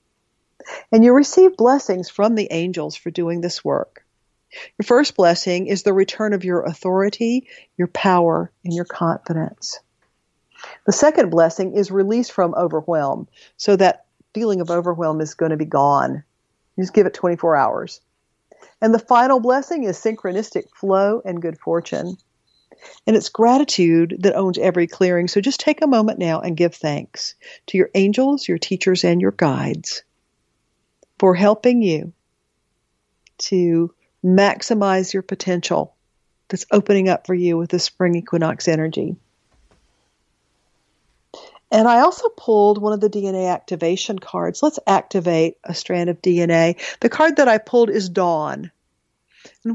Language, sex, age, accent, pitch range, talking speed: English, female, 50-69, American, 175-225 Hz, 150 wpm